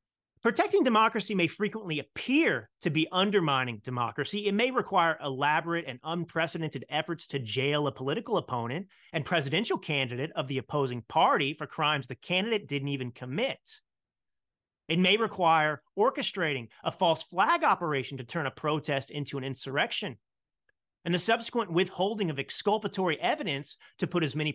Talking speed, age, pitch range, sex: 150 wpm, 30-49, 140-190 Hz, male